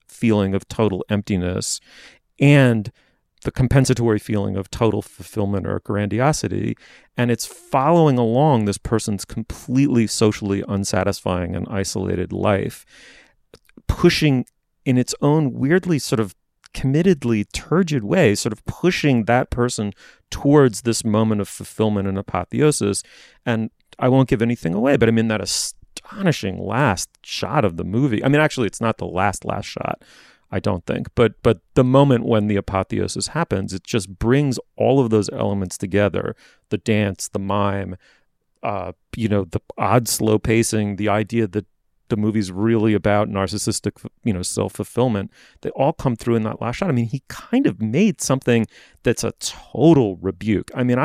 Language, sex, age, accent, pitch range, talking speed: English, male, 30-49, American, 100-125 Hz, 160 wpm